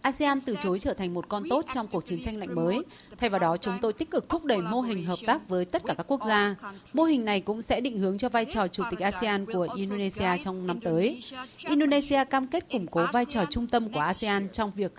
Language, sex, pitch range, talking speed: Vietnamese, female, 190-250 Hz, 255 wpm